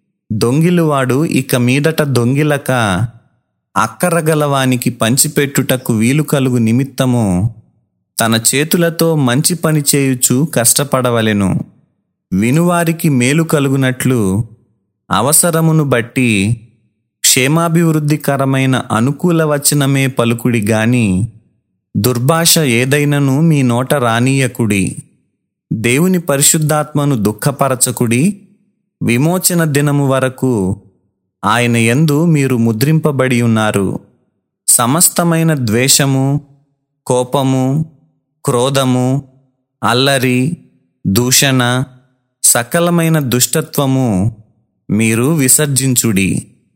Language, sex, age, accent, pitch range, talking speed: Telugu, male, 30-49, native, 120-150 Hz, 65 wpm